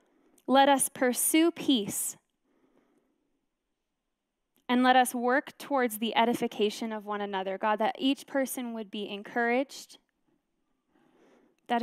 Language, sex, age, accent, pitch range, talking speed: English, female, 10-29, American, 220-280 Hz, 110 wpm